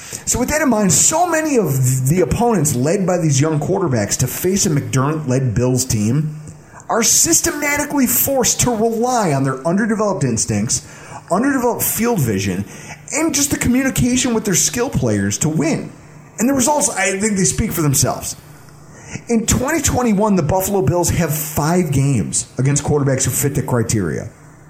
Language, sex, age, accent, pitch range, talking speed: English, male, 30-49, American, 140-185 Hz, 160 wpm